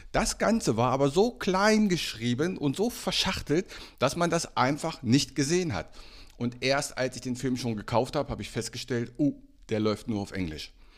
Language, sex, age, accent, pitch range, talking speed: German, male, 50-69, German, 100-140 Hz, 195 wpm